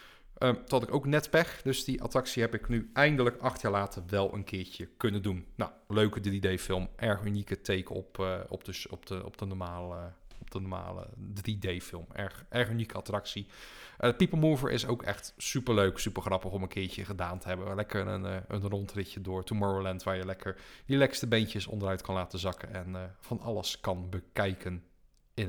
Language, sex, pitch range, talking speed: Dutch, male, 95-130 Hz, 195 wpm